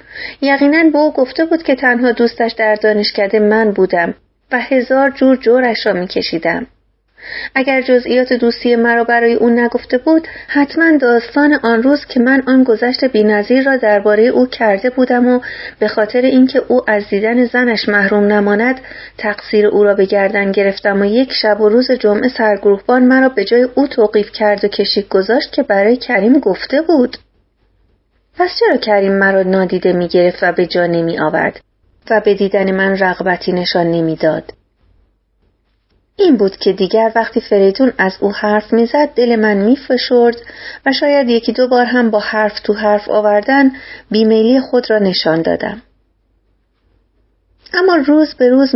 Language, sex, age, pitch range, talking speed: Persian, female, 30-49, 205-255 Hz, 160 wpm